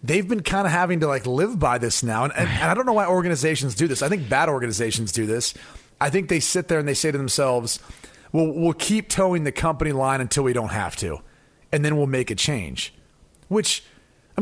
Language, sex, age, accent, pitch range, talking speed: English, male, 30-49, American, 135-185 Hz, 235 wpm